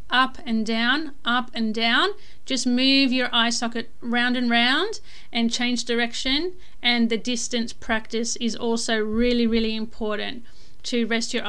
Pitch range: 225-255 Hz